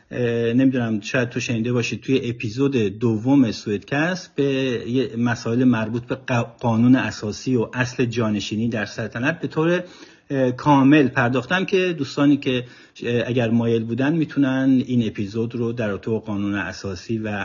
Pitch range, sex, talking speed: 115-150 Hz, male, 140 wpm